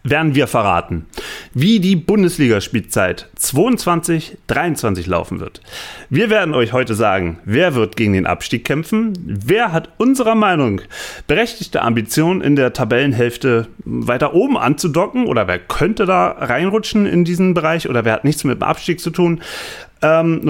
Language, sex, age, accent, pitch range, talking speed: German, male, 30-49, German, 120-175 Hz, 150 wpm